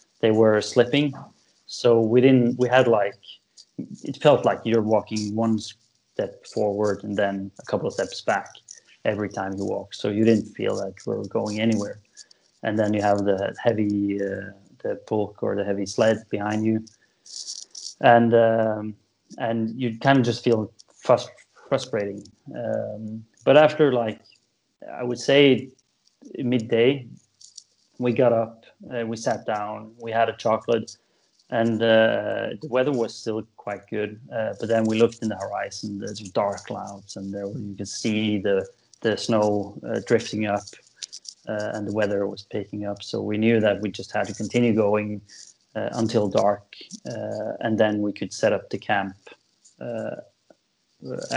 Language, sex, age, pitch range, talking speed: English, male, 30-49, 100-115 Hz, 165 wpm